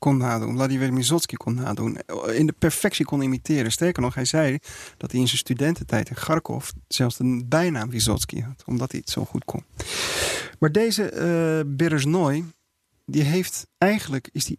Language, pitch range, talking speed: Dutch, 125-155 Hz, 175 wpm